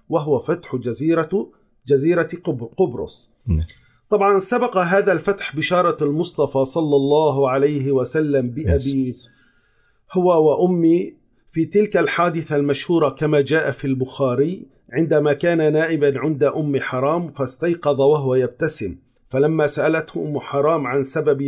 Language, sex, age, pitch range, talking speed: Arabic, male, 40-59, 135-165 Hz, 115 wpm